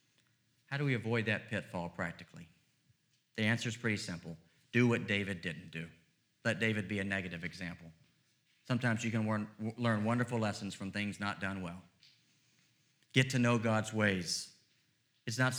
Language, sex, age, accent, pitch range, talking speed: English, male, 40-59, American, 105-140 Hz, 160 wpm